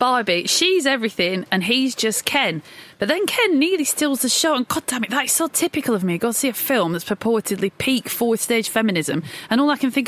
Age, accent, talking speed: 30-49, British, 225 wpm